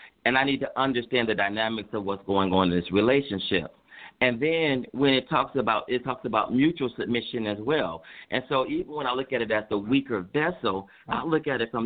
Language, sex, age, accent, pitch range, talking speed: English, male, 40-59, American, 110-140 Hz, 225 wpm